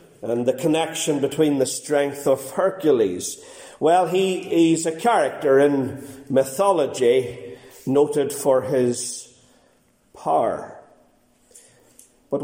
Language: English